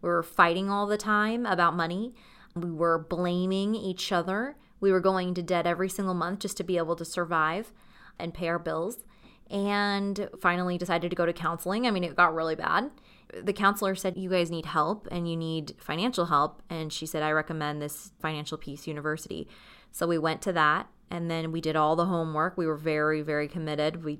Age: 20-39